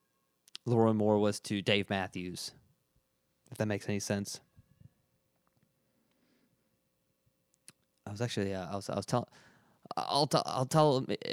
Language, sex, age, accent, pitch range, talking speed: English, male, 20-39, American, 100-125 Hz, 125 wpm